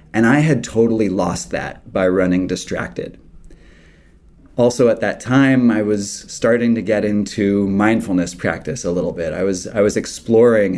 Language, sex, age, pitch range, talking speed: English, male, 30-49, 95-115 Hz, 160 wpm